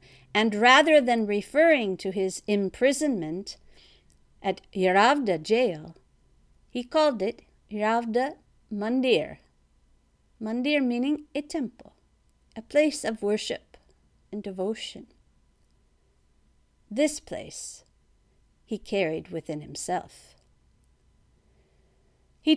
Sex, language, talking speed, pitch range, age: female, English, 85 wpm, 190-275 Hz, 50-69